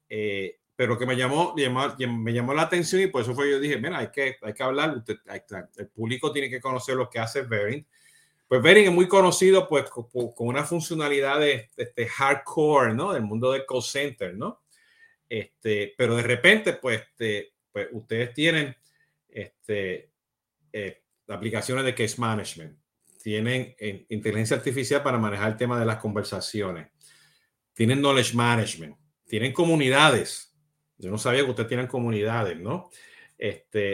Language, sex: Spanish, male